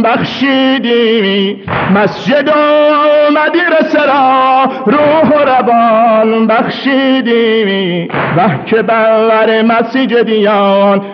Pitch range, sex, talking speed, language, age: 175-230 Hz, male, 65 wpm, Persian, 50-69